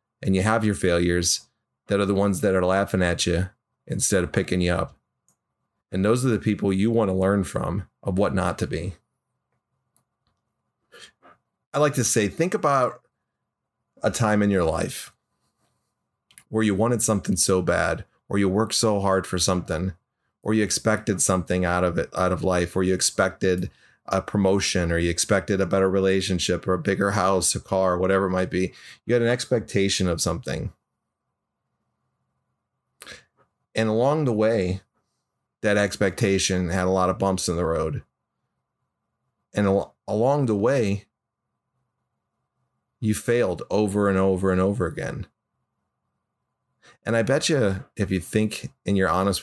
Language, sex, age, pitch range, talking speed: English, male, 30-49, 90-110 Hz, 160 wpm